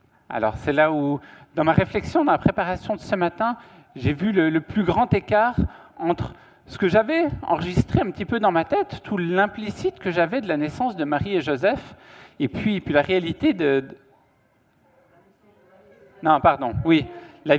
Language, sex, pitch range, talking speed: French, male, 145-200 Hz, 180 wpm